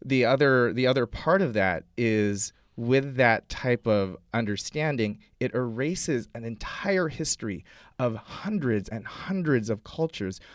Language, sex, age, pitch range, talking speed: English, male, 30-49, 110-145 Hz, 135 wpm